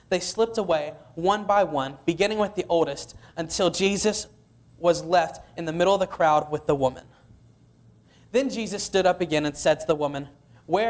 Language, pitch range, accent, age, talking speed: English, 150-195 Hz, American, 20-39, 185 wpm